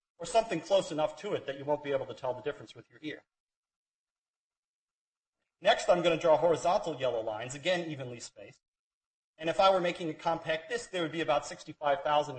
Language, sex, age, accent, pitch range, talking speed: English, male, 40-59, American, 130-180 Hz, 205 wpm